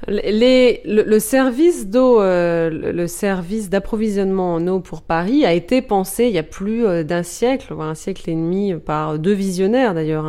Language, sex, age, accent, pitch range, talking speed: French, female, 30-49, French, 175-245 Hz, 180 wpm